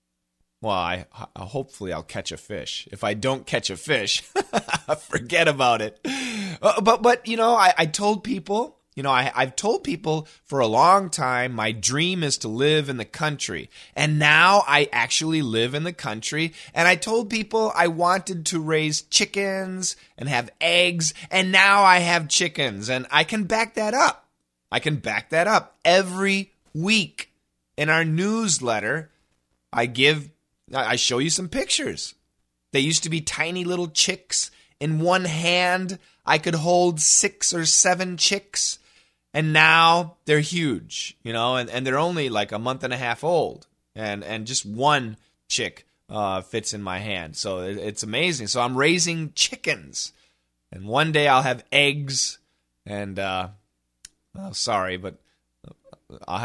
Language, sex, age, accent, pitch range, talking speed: English, male, 20-39, American, 110-180 Hz, 165 wpm